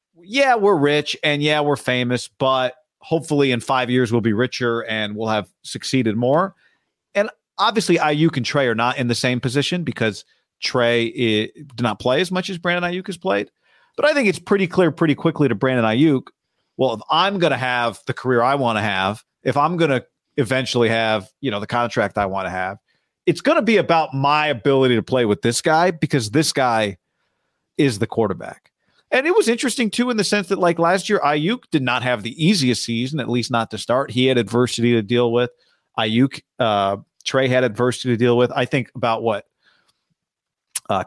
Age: 40-59